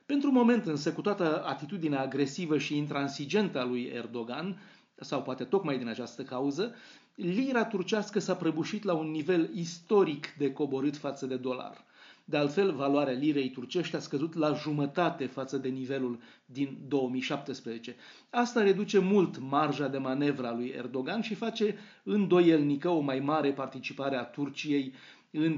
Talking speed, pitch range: 150 wpm, 135-175 Hz